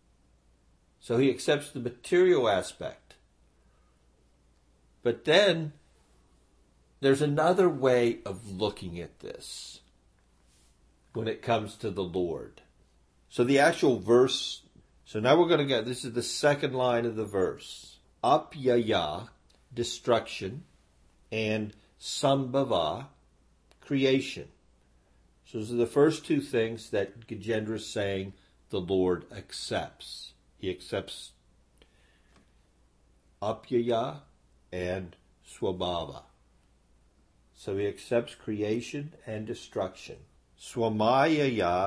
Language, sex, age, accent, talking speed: English, male, 50-69, American, 100 wpm